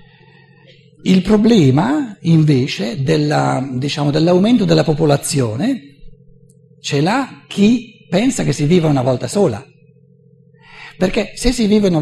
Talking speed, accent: 115 wpm, native